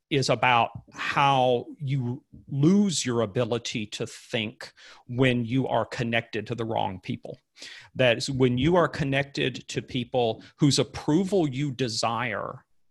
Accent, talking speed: American, 135 wpm